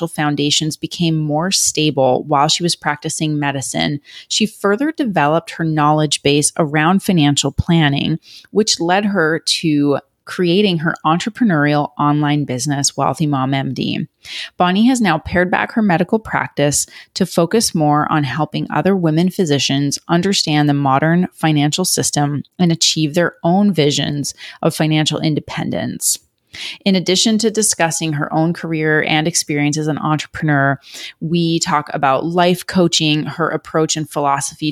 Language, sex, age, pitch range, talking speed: English, female, 30-49, 150-175 Hz, 140 wpm